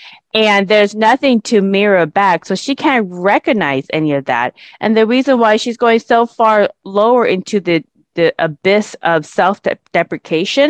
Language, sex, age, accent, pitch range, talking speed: English, female, 20-39, American, 170-220 Hz, 155 wpm